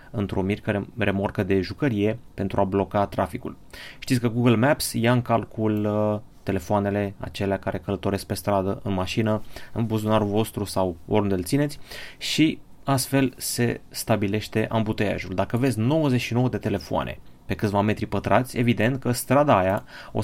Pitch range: 100-125 Hz